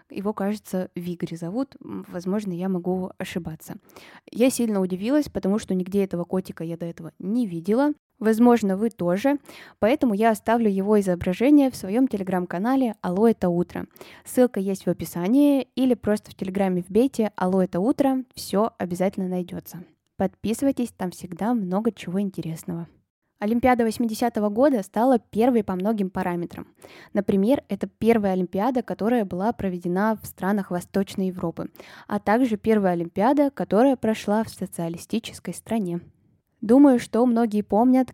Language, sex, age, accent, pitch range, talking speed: Russian, female, 20-39, native, 180-230 Hz, 140 wpm